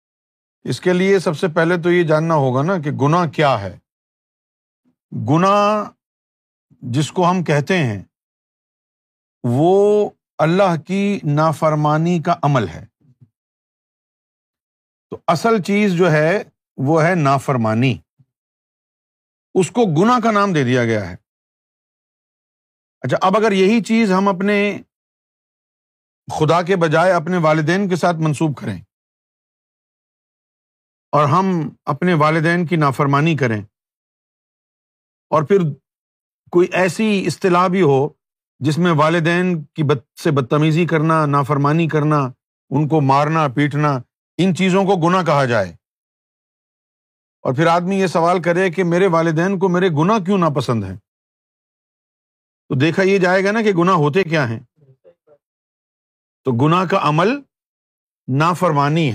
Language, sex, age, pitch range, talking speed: Urdu, male, 50-69, 140-185 Hz, 130 wpm